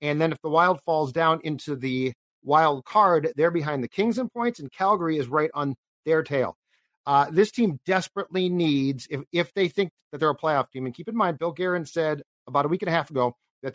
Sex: male